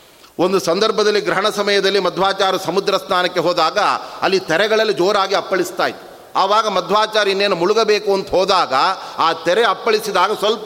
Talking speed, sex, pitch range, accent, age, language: 125 wpm, male, 165-200 Hz, native, 30-49, Kannada